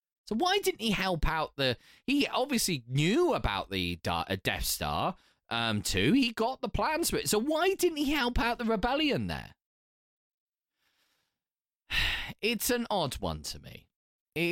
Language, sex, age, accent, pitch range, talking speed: English, male, 20-39, British, 125-195 Hz, 160 wpm